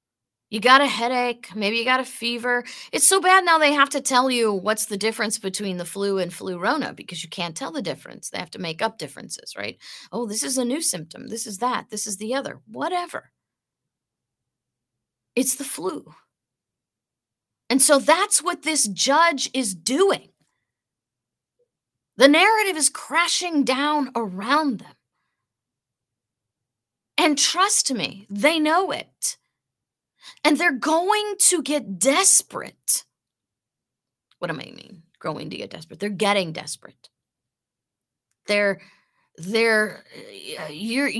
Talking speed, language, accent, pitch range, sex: 145 wpm, English, American, 200-300 Hz, female